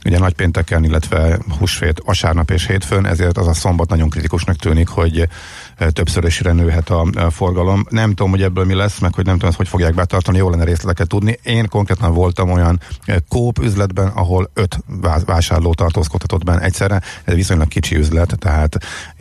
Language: Hungarian